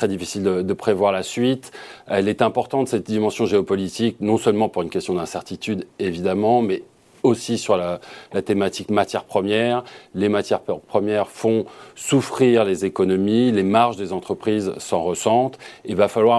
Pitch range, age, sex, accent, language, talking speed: 105-130 Hz, 40-59, male, French, French, 160 wpm